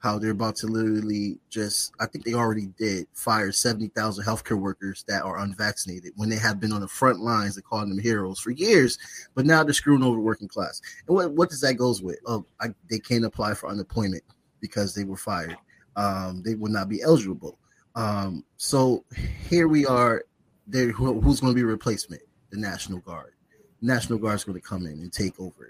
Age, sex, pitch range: 20-39, male, 100-130 Hz